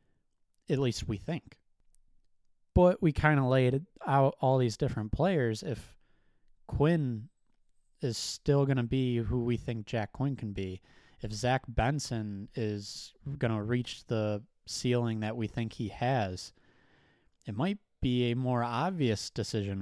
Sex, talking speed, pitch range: male, 150 wpm, 105-130 Hz